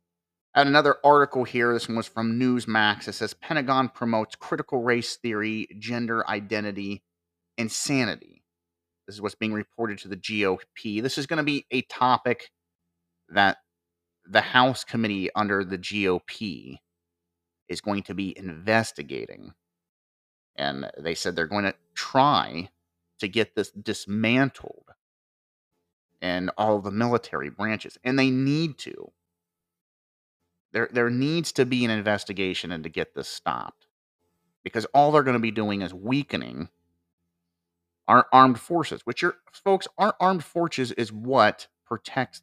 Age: 30-49